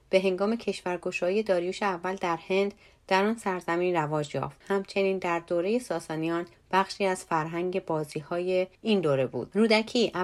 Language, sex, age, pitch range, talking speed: Persian, female, 30-49, 165-200 Hz, 140 wpm